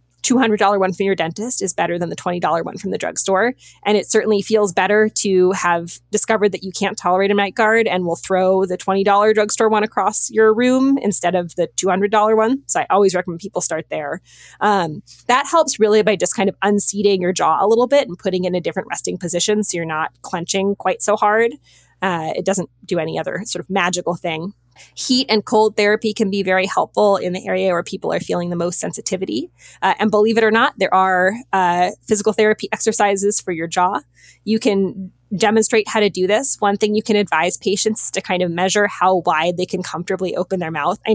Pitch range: 180-215 Hz